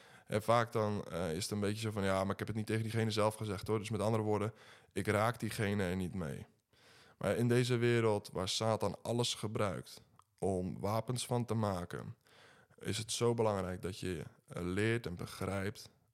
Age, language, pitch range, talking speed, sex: 20-39, Dutch, 100-115 Hz, 195 wpm, male